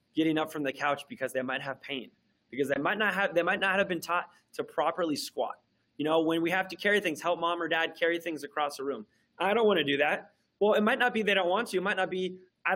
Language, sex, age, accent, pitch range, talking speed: English, male, 20-39, American, 150-195 Hz, 280 wpm